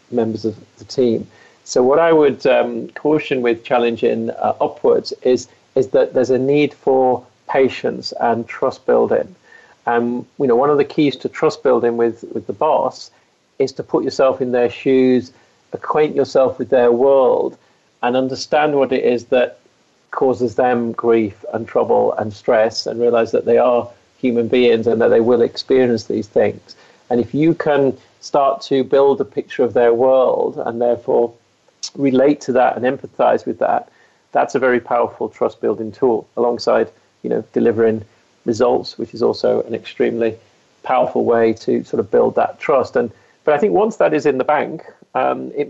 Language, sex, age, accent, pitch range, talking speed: English, male, 40-59, British, 115-140 Hz, 180 wpm